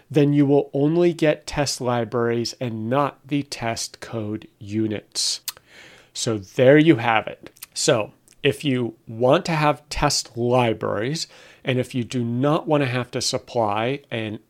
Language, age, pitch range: English, 40-59, 110-135 Hz